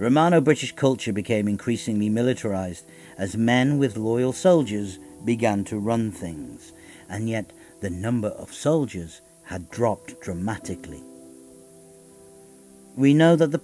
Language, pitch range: English, 90-130 Hz